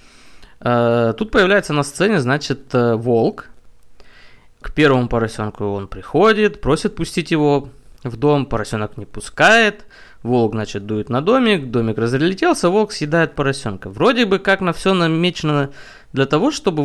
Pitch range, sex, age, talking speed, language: 120-180 Hz, male, 20-39, 135 wpm, Russian